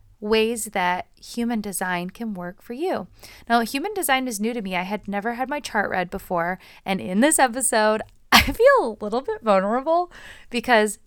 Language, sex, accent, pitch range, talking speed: English, female, American, 185-240 Hz, 185 wpm